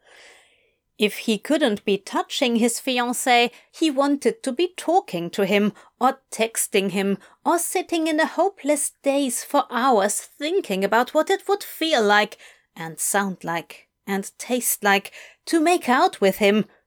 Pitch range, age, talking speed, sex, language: 200-285 Hz, 30-49, 155 wpm, female, English